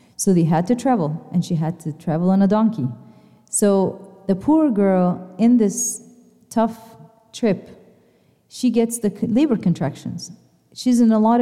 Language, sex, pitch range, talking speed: English, female, 190-250 Hz, 160 wpm